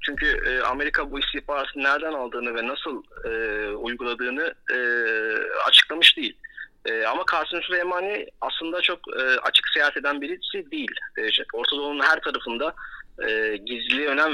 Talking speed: 135 wpm